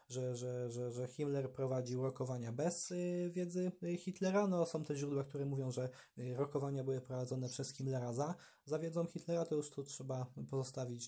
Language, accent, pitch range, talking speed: Polish, native, 125-150 Hz, 170 wpm